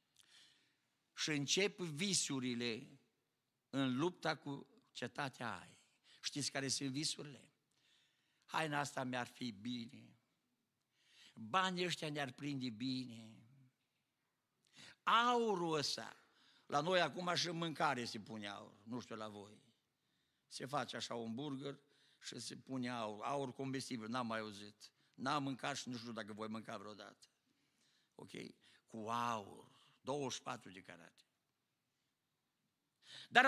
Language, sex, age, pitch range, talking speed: Romanian, male, 60-79, 125-205 Hz, 120 wpm